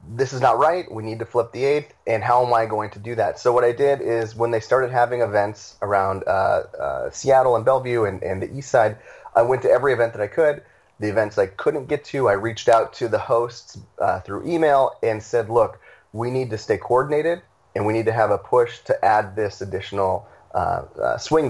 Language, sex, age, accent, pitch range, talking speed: English, male, 30-49, American, 105-125 Hz, 235 wpm